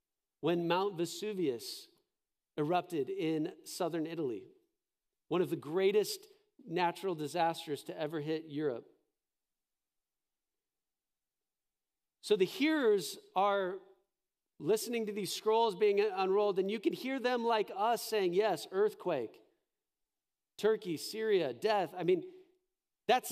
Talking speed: 110 wpm